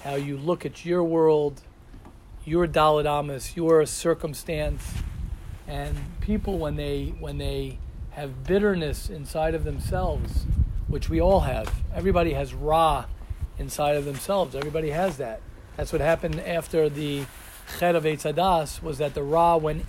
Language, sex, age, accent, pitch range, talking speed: English, male, 40-59, American, 150-195 Hz, 140 wpm